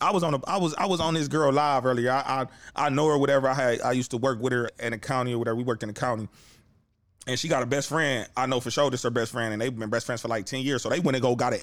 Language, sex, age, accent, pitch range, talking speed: English, male, 20-39, American, 120-150 Hz, 350 wpm